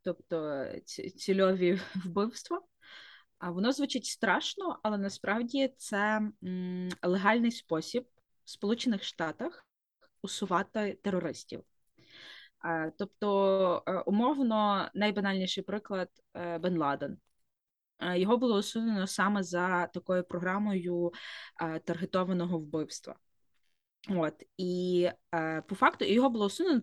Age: 20-39